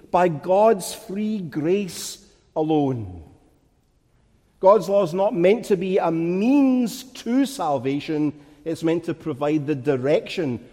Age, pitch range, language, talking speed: 50-69, 135-180 Hz, English, 125 wpm